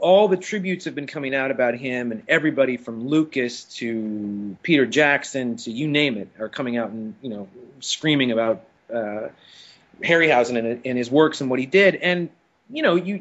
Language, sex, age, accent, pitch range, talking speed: English, male, 30-49, American, 120-165 Hz, 190 wpm